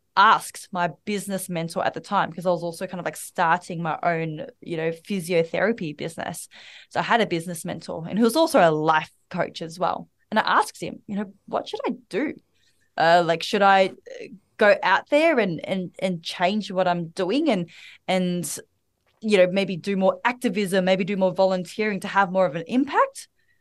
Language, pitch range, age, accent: English, 175-230 Hz, 20-39, Australian